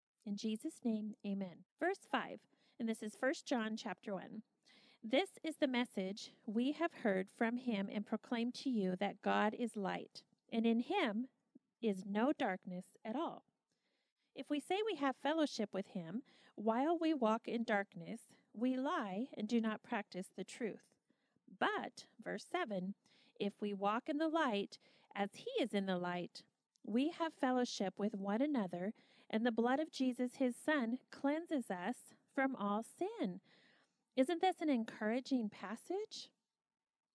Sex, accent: female, American